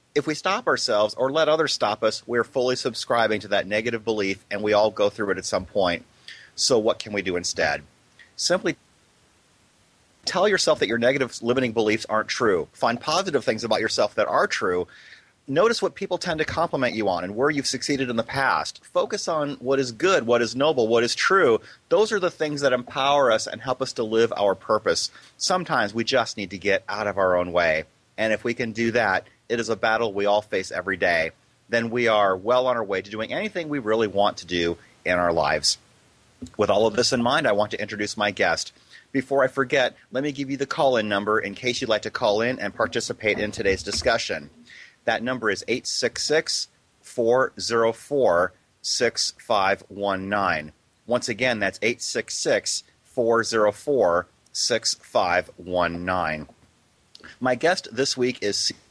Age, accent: 30-49, American